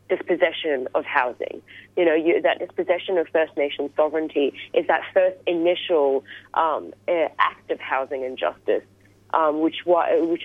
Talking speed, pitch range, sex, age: 150 wpm, 135-170 Hz, female, 30-49